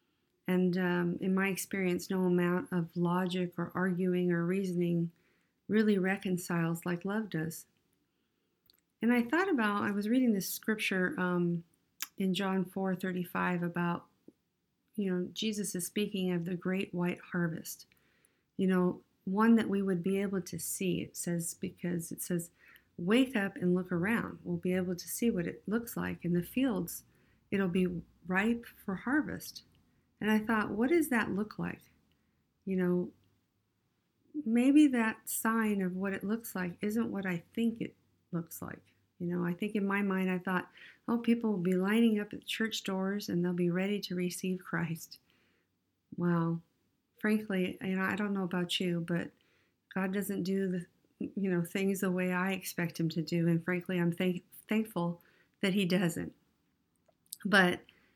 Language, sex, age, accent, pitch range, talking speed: English, female, 50-69, American, 175-205 Hz, 170 wpm